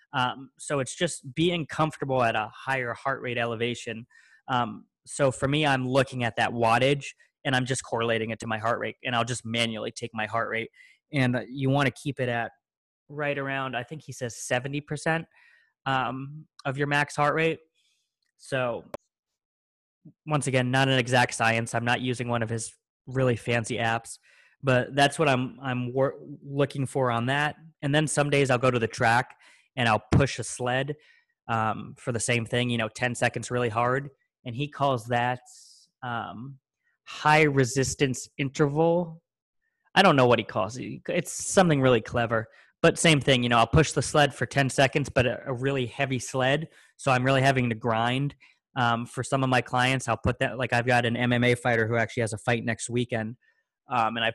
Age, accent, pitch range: 20-39, American, 120-140 Hz